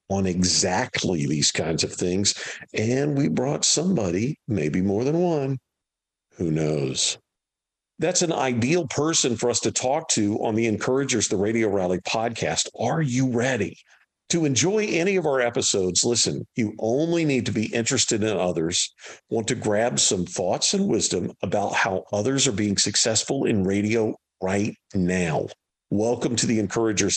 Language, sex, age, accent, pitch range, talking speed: English, male, 50-69, American, 95-125 Hz, 155 wpm